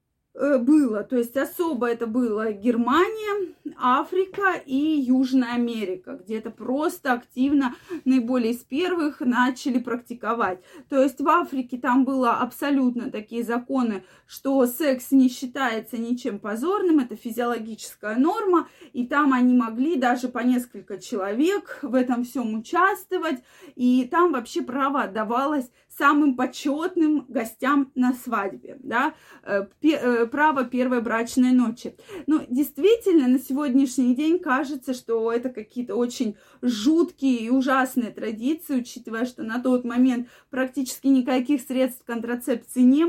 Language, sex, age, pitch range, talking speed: Russian, female, 20-39, 240-285 Hz, 125 wpm